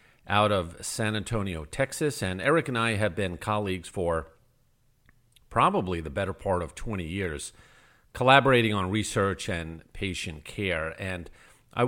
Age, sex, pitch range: 50-69, male, 90-125 Hz